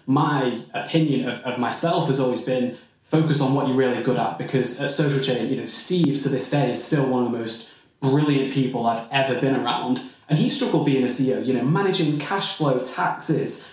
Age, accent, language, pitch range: 20-39, British, English, 130-150 Hz